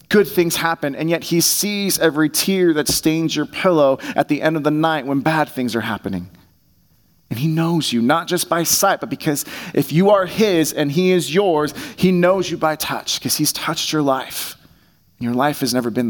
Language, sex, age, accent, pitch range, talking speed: English, male, 30-49, American, 140-185 Hz, 215 wpm